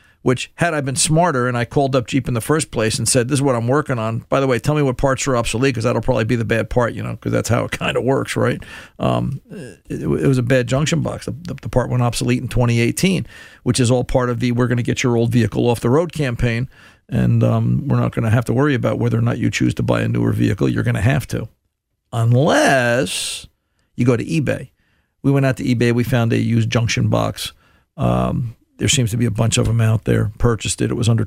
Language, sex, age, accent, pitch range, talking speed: English, male, 50-69, American, 115-155 Hz, 265 wpm